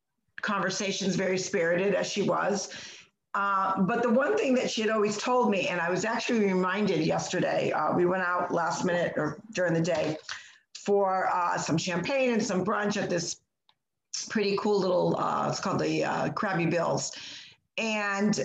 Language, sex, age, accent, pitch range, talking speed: English, female, 50-69, American, 175-210 Hz, 170 wpm